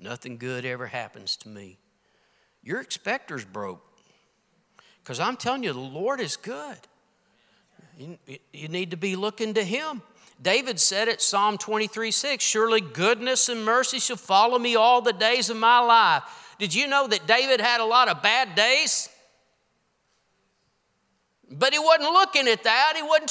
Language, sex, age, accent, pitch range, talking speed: English, male, 50-69, American, 195-255 Hz, 160 wpm